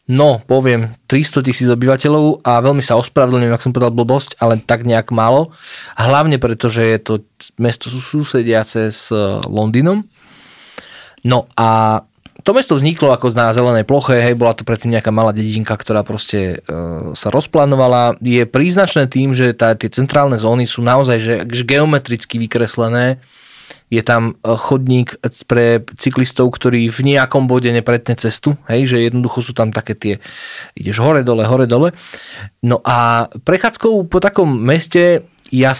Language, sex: Slovak, male